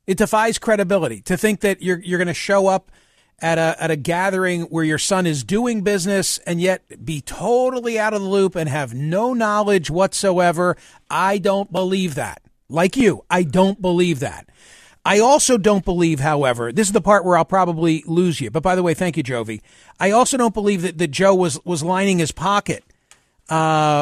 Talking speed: 200 wpm